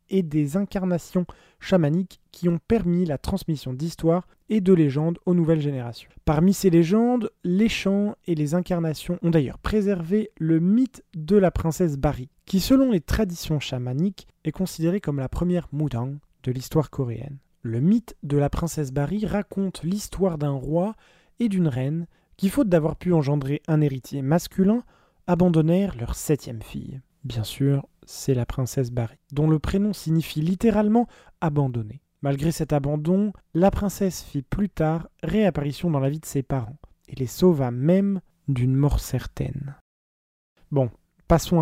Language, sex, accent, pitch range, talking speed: French, male, French, 145-190 Hz, 155 wpm